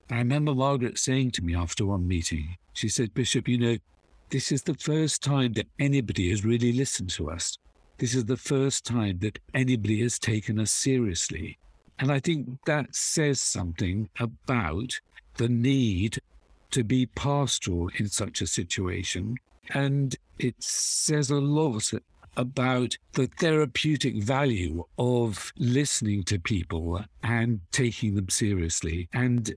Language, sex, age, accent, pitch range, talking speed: English, male, 60-79, British, 95-130 Hz, 145 wpm